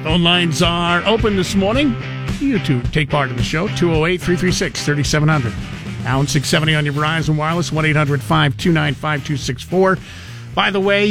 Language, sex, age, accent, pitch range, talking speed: English, male, 50-69, American, 140-190 Hz, 140 wpm